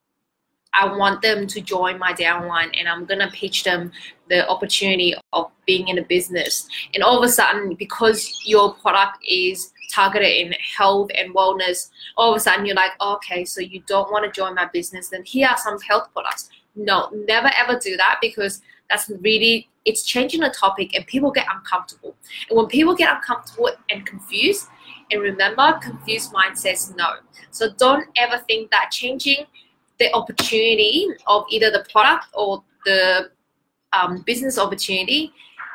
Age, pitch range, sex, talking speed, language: 20-39, 185-240 Hz, female, 170 wpm, English